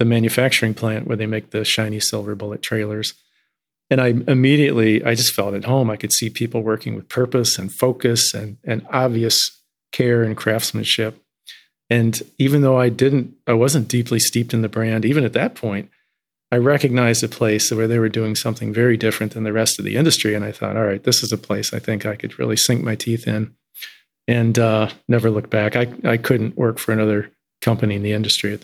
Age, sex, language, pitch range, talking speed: 40-59, male, English, 110-125 Hz, 210 wpm